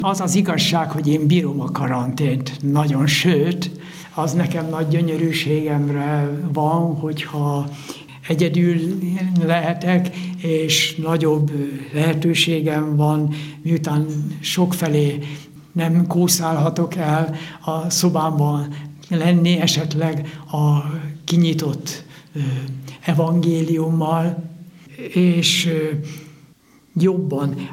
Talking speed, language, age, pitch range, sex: 80 wpm, Hungarian, 60-79, 145-170 Hz, male